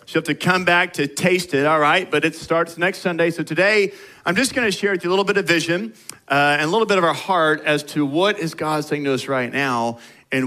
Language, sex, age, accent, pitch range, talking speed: English, male, 40-59, American, 145-185 Hz, 275 wpm